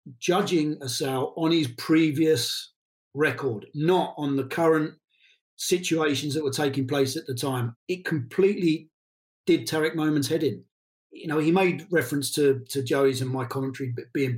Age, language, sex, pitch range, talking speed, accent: 40-59, English, male, 135-175 Hz, 165 wpm, British